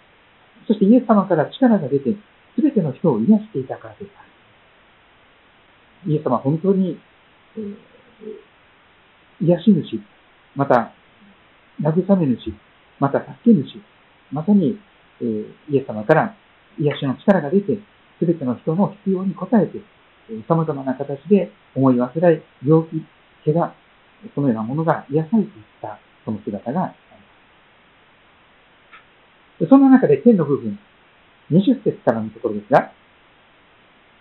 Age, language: 50-69, Japanese